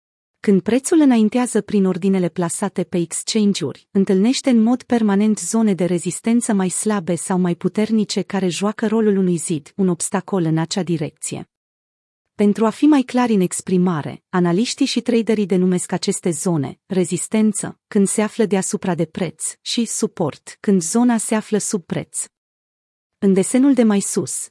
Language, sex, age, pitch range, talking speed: Romanian, female, 30-49, 175-225 Hz, 155 wpm